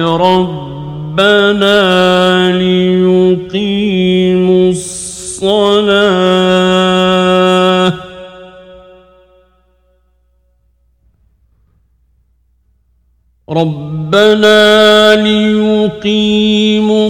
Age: 50-69